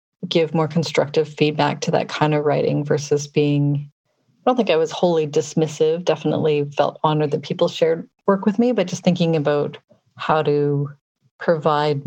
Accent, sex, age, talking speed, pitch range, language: American, female, 40-59, 170 wpm, 145-165 Hz, English